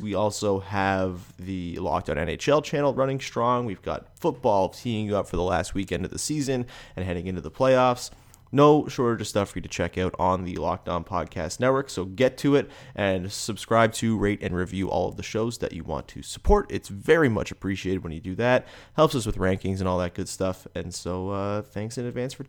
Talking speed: 230 wpm